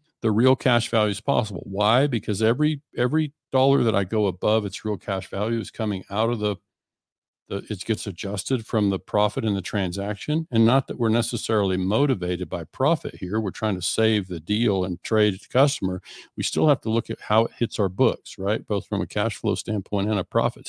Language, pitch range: English, 100-120 Hz